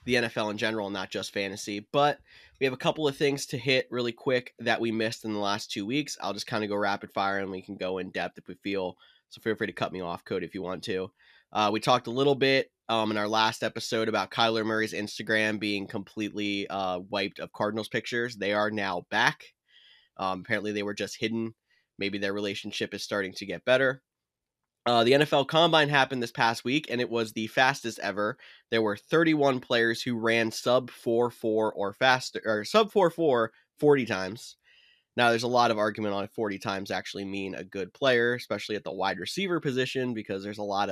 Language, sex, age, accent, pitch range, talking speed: English, male, 20-39, American, 100-125 Hz, 220 wpm